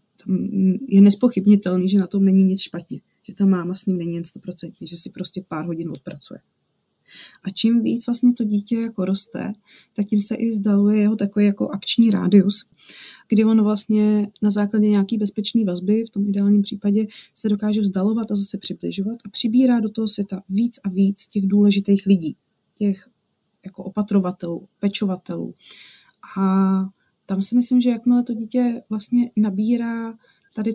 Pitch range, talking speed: 195-235 Hz, 165 wpm